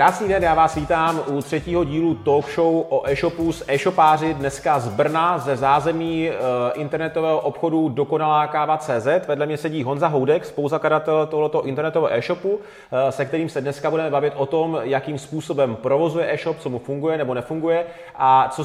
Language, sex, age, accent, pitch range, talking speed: Czech, male, 30-49, native, 135-160 Hz, 165 wpm